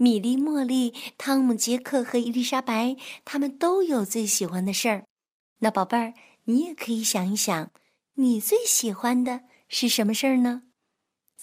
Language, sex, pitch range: Chinese, female, 175-240 Hz